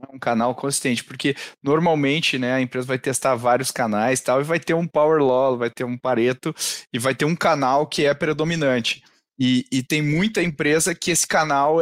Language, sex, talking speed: Portuguese, male, 195 wpm